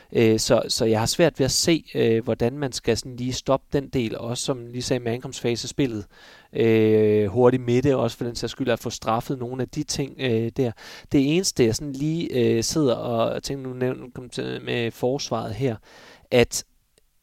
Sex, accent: male, native